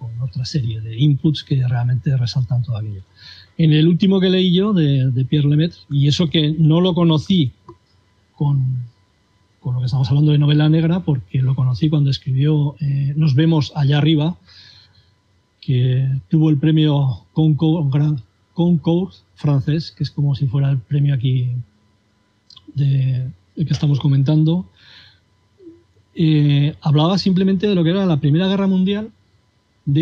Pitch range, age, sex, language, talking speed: 125-165 Hz, 40-59, male, Spanish, 155 wpm